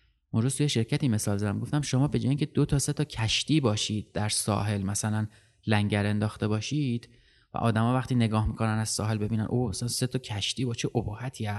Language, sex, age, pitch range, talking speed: Persian, male, 30-49, 110-145 Hz, 190 wpm